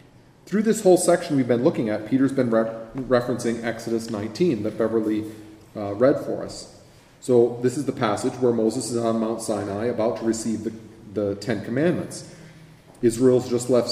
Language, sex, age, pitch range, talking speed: English, male, 30-49, 110-135 Hz, 170 wpm